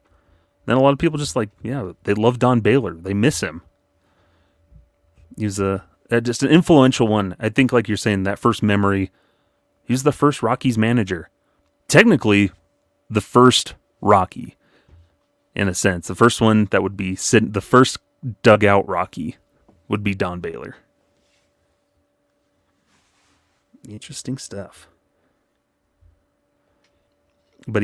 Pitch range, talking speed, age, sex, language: 95-110 Hz, 125 wpm, 30-49, male, English